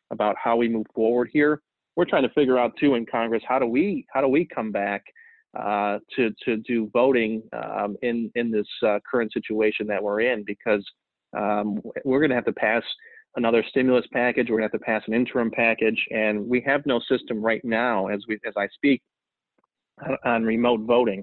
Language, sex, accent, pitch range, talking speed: English, male, American, 105-120 Hz, 205 wpm